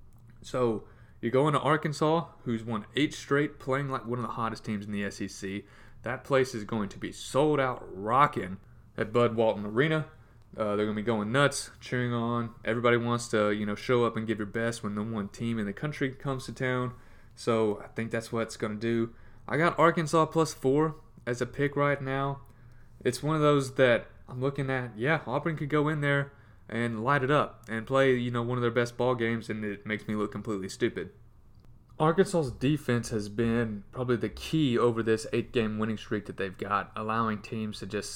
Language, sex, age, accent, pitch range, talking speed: English, male, 30-49, American, 110-130 Hz, 210 wpm